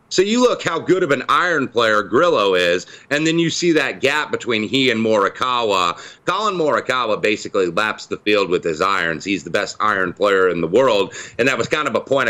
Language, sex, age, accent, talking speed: English, male, 30-49, American, 220 wpm